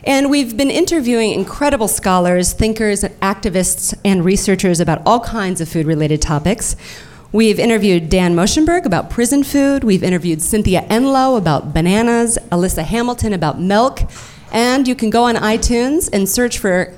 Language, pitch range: English, 165-225 Hz